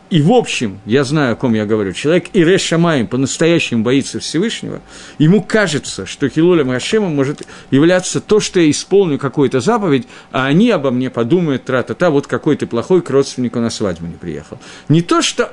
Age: 50-69